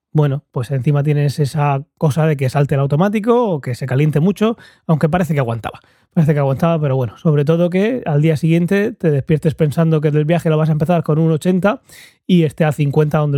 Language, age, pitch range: Spanish, 20-39, 140-165 Hz